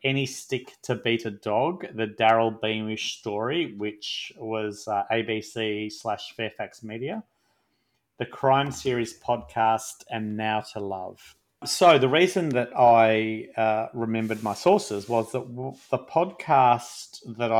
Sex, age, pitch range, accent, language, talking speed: male, 30-49, 105-120 Hz, Australian, English, 135 wpm